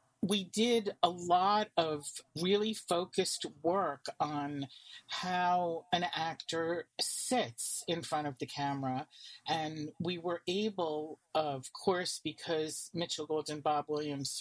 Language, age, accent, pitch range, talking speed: English, 40-59, American, 145-175 Hz, 125 wpm